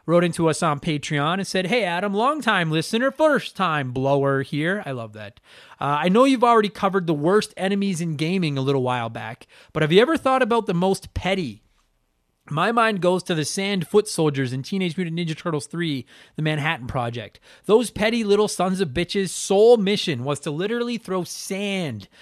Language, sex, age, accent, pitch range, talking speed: English, male, 30-49, American, 150-205 Hz, 195 wpm